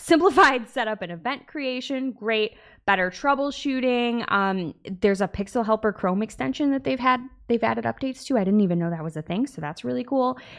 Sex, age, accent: female, 20-39, American